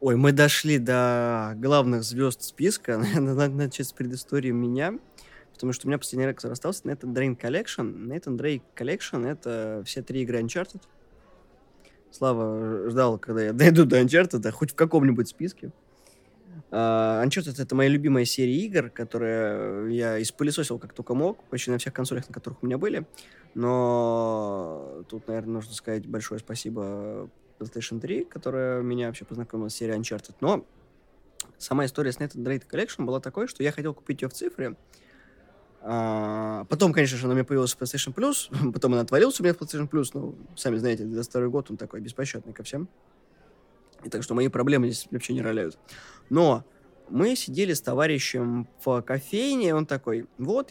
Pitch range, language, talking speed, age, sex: 115-140 Hz, Russian, 170 wpm, 20-39, male